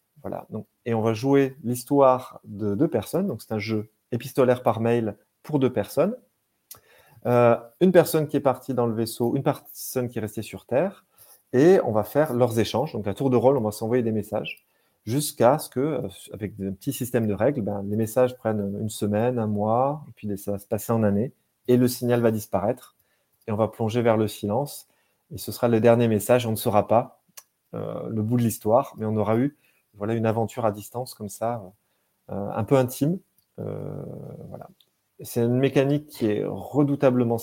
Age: 30-49